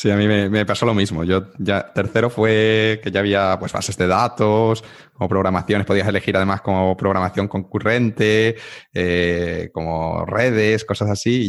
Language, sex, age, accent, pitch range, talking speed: Spanish, male, 20-39, Spanish, 95-120 Hz, 170 wpm